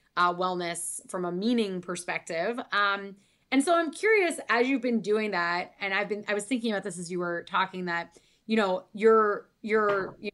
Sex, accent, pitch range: female, American, 180-220 Hz